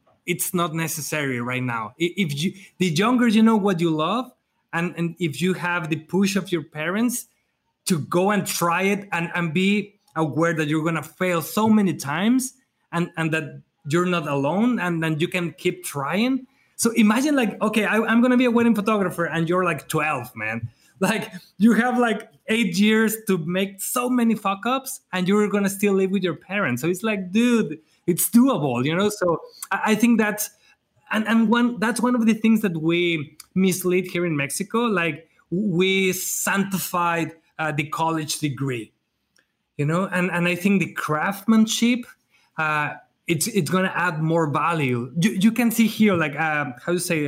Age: 20-39